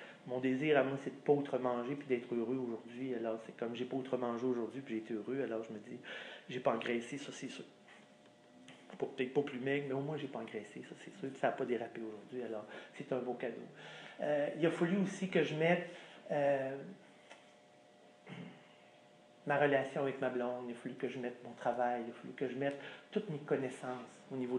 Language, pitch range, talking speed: French, 125-150 Hz, 230 wpm